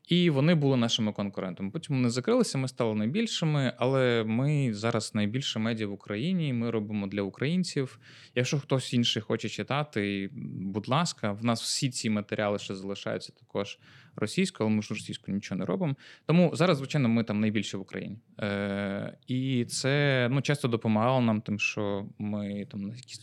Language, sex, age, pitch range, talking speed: Ukrainian, male, 20-39, 105-135 Hz, 170 wpm